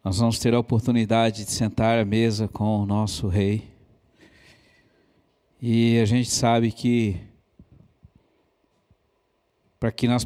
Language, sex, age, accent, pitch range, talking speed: Portuguese, male, 60-79, Brazilian, 110-125 Hz, 125 wpm